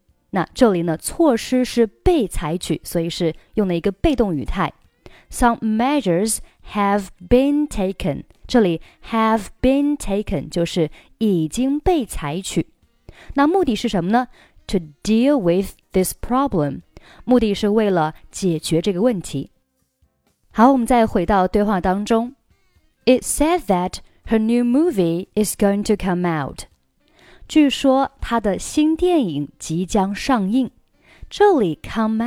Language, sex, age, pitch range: Chinese, female, 20-39, 175-250 Hz